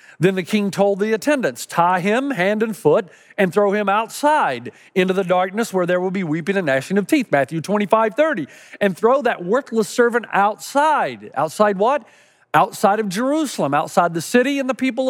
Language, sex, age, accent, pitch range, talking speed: English, male, 40-59, American, 180-240 Hz, 185 wpm